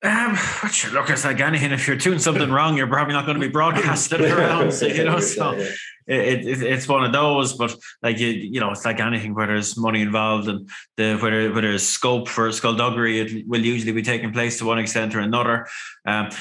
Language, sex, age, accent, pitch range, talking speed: English, male, 20-39, Irish, 115-140 Hz, 215 wpm